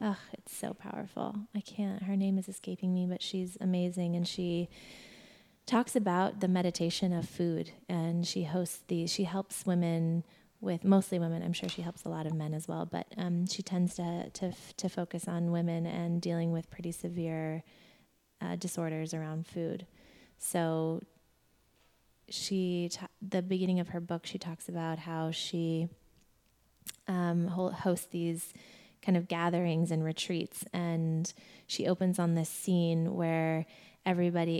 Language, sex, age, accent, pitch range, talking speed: English, female, 20-39, American, 170-190 Hz, 160 wpm